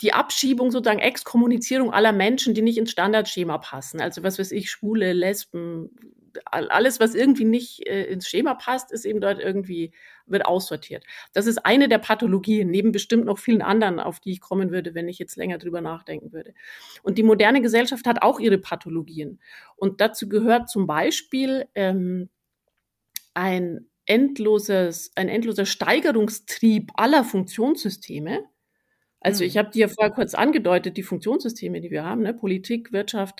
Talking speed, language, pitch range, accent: 155 wpm, German, 185-235 Hz, German